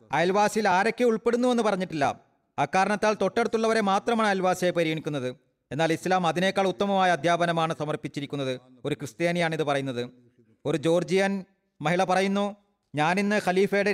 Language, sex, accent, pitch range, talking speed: Malayalam, male, native, 150-200 Hz, 110 wpm